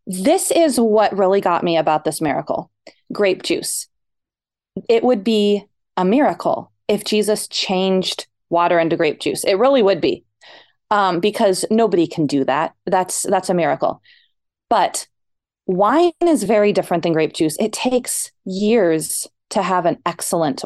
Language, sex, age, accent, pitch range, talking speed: English, female, 30-49, American, 170-235 Hz, 150 wpm